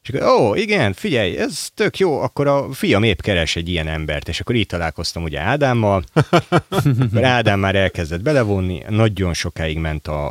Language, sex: Hungarian, male